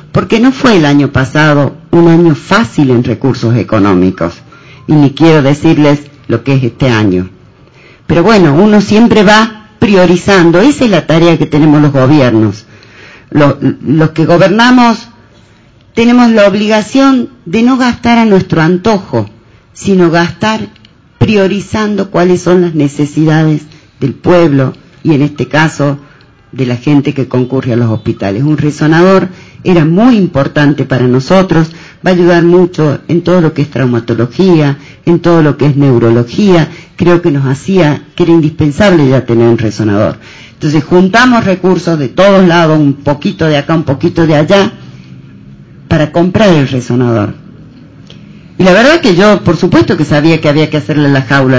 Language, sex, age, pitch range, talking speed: English, female, 40-59, 125-175 Hz, 160 wpm